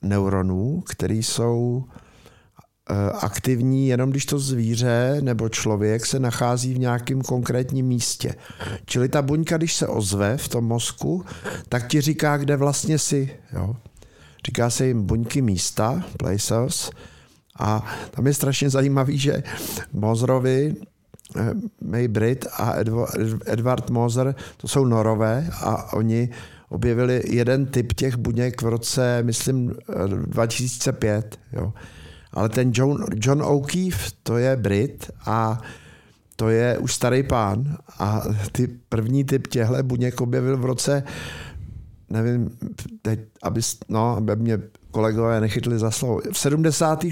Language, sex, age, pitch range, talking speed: Czech, male, 50-69, 110-135 Hz, 125 wpm